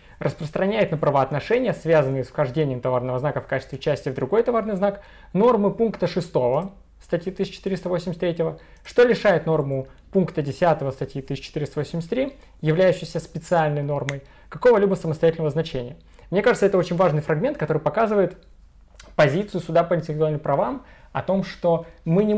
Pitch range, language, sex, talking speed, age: 140-180 Hz, Russian, male, 135 wpm, 20-39